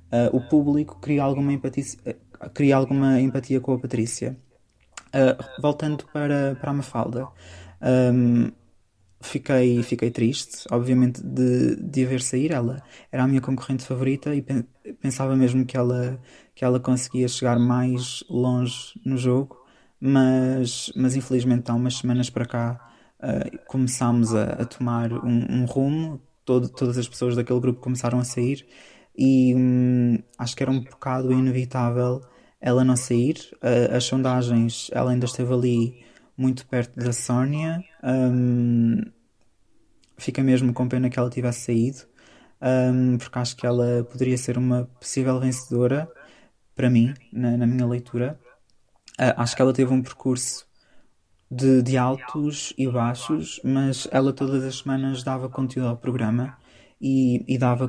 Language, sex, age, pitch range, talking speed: Portuguese, male, 20-39, 120-130 Hz, 140 wpm